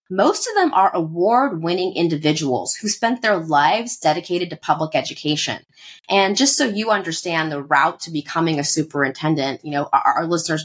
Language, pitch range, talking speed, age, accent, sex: English, 150-200 Hz, 170 wpm, 30-49, American, female